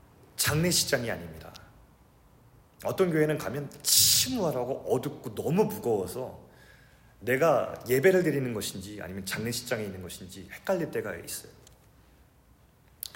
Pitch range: 135-190 Hz